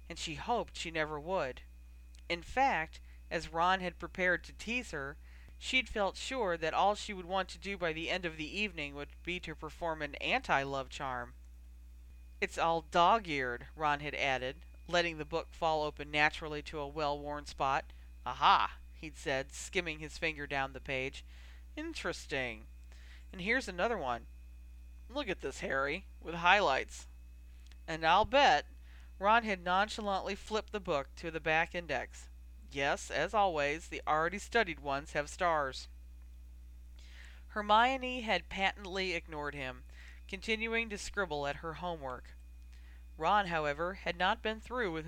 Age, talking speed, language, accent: 40-59, 150 wpm, English, American